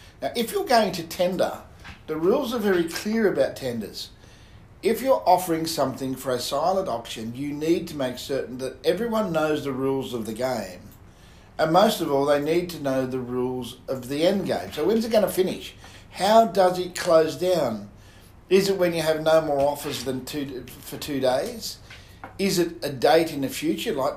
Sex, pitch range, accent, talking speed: male, 125-170 Hz, Australian, 200 wpm